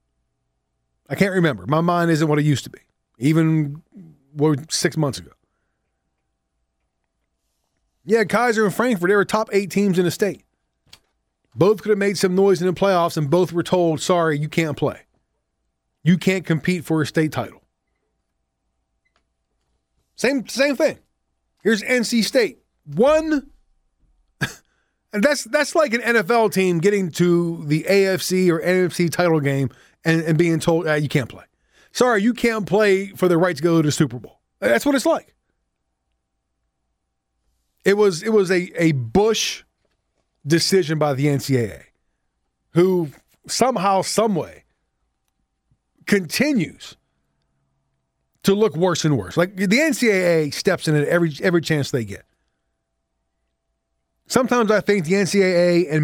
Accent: American